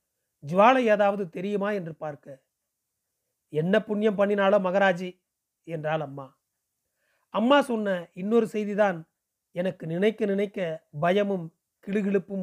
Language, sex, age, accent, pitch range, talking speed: Tamil, male, 40-59, native, 165-215 Hz, 95 wpm